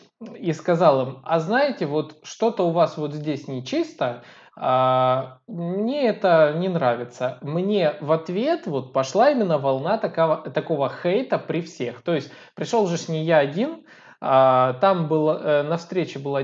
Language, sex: Russian, male